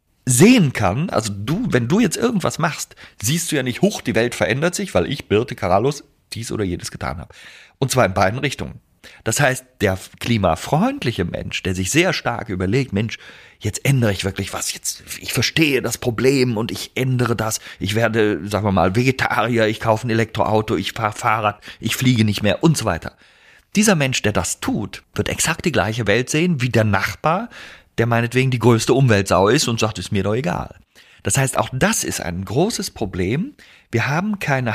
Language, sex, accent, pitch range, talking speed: German, male, German, 100-130 Hz, 195 wpm